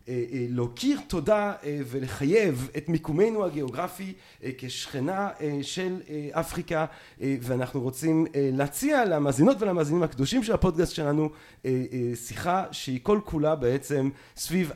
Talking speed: 100 wpm